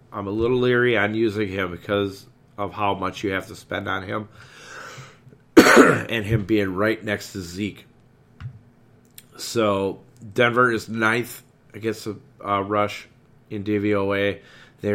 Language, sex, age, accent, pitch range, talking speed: English, male, 30-49, American, 95-120 Hz, 140 wpm